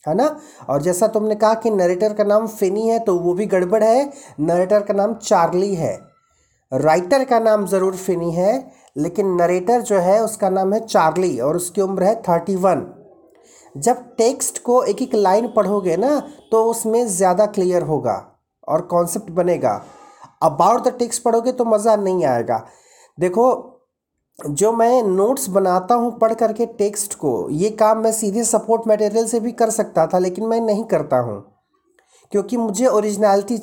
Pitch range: 180-225 Hz